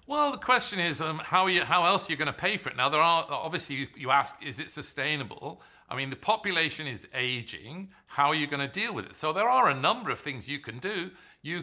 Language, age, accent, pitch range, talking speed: English, 50-69, British, 135-165 Hz, 270 wpm